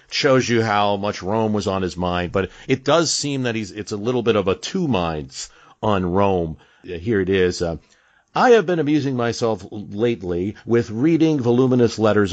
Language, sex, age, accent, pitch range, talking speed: English, male, 50-69, American, 95-125 Hz, 190 wpm